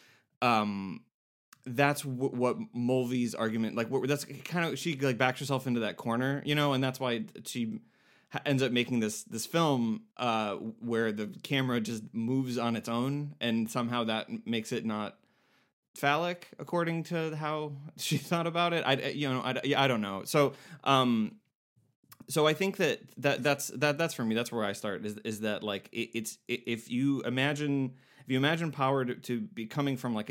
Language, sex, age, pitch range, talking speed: English, male, 30-49, 110-140 Hz, 190 wpm